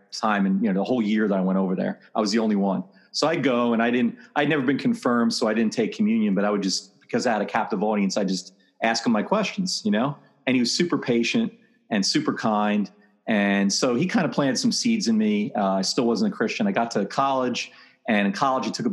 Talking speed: 265 wpm